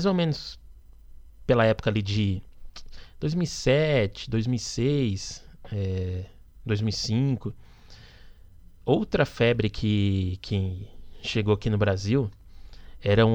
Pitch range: 100-125 Hz